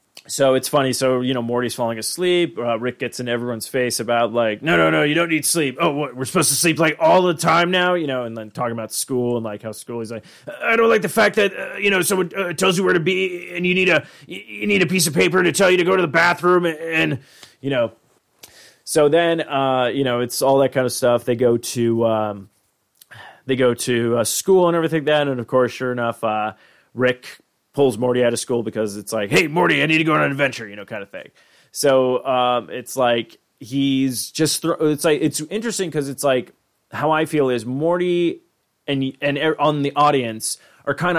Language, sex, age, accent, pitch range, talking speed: English, male, 30-49, American, 120-160 Hz, 240 wpm